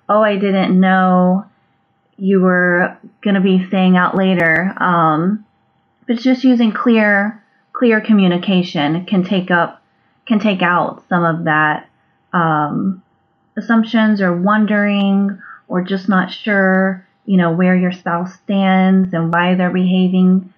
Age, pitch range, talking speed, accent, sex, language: 20-39, 170-200 Hz, 130 wpm, American, female, English